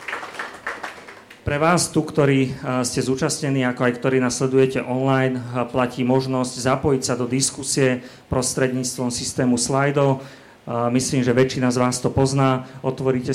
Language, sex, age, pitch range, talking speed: Slovak, male, 40-59, 125-135 Hz, 125 wpm